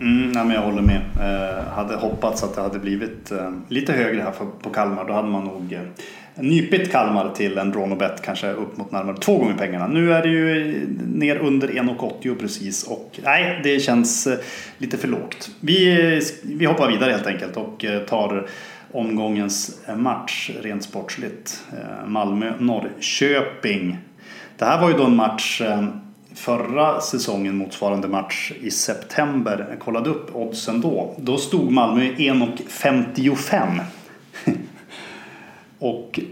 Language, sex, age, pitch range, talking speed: English, male, 30-49, 100-145 Hz, 155 wpm